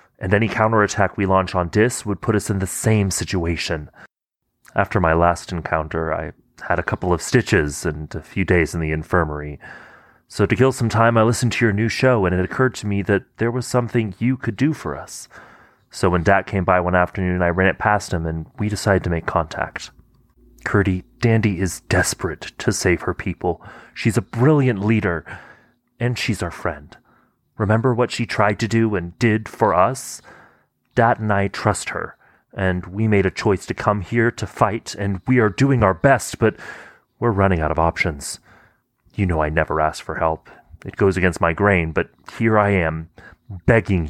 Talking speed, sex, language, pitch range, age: 195 wpm, male, English, 90-115 Hz, 30-49